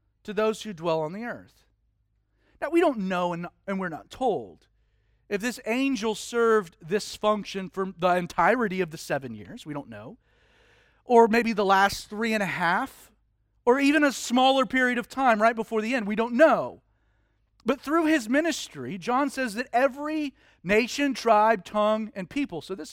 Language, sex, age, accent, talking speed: English, male, 40-59, American, 180 wpm